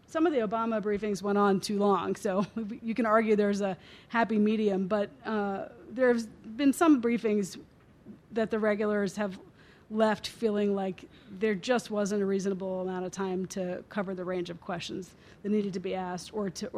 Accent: American